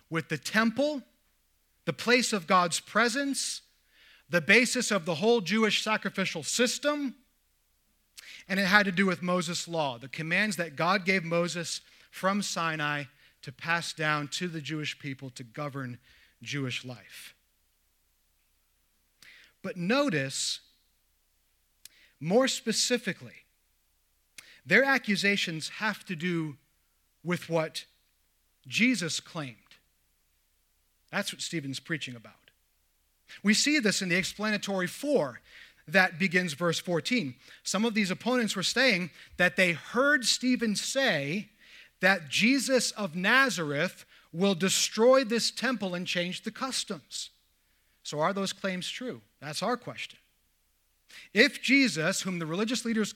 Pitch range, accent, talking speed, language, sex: 145-220 Hz, American, 125 wpm, English, male